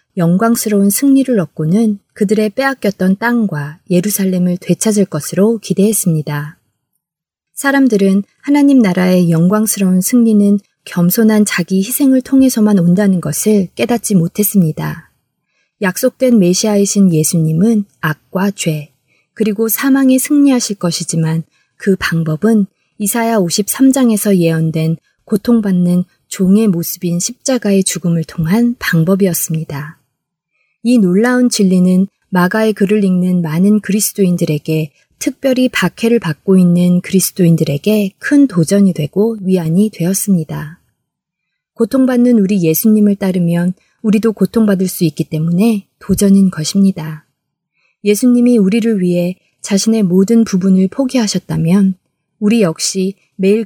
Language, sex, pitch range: Korean, female, 170-220 Hz